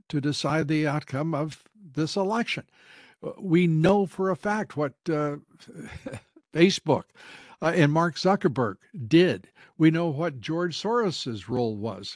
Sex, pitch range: male, 135-175 Hz